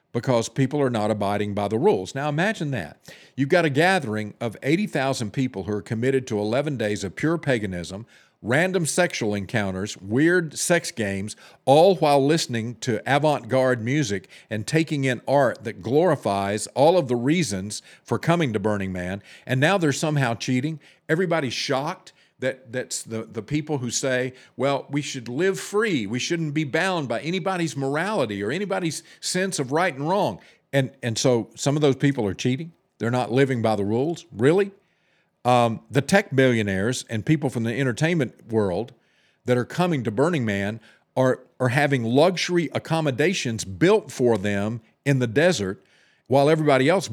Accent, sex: American, male